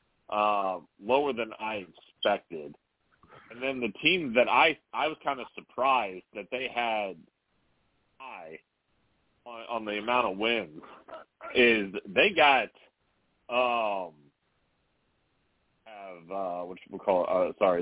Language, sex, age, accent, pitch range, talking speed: English, male, 40-59, American, 115-150 Hz, 130 wpm